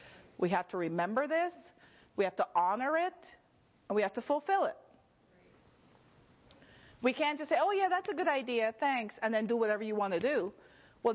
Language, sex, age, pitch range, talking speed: English, female, 40-59, 180-255 Hz, 195 wpm